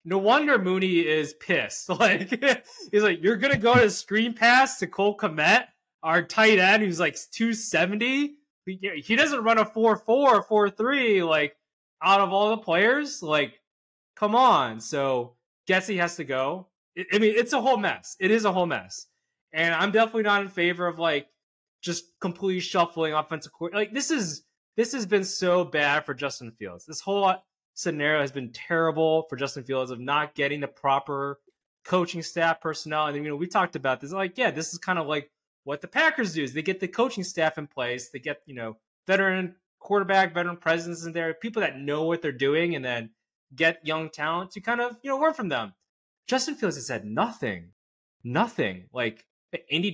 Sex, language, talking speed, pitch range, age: male, English, 190 wpm, 145-205 Hz, 20-39